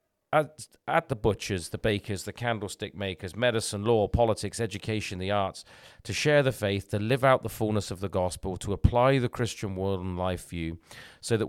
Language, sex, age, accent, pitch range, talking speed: English, male, 40-59, British, 100-125 Hz, 195 wpm